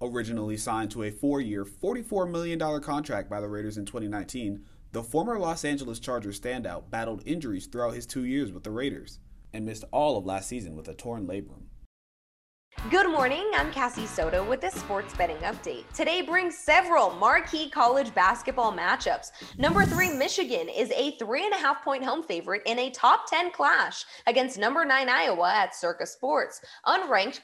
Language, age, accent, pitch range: English, 20-39, American, 165-270 Hz